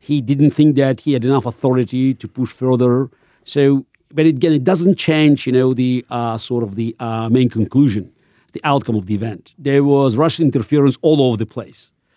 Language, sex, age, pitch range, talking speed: English, male, 50-69, 120-150 Hz, 195 wpm